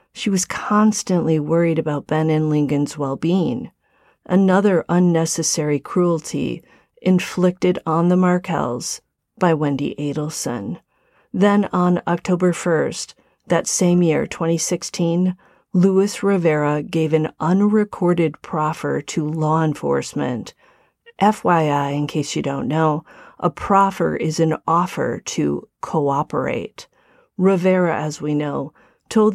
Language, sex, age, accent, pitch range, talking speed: English, female, 40-59, American, 155-185 Hz, 110 wpm